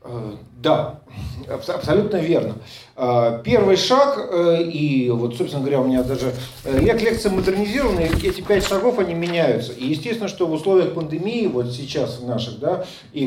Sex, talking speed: male, 140 wpm